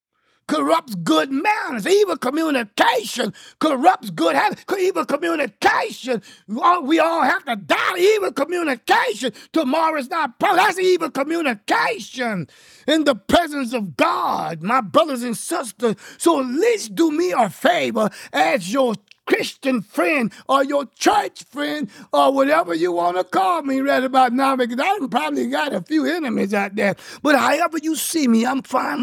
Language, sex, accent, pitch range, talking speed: English, male, American, 200-305 Hz, 155 wpm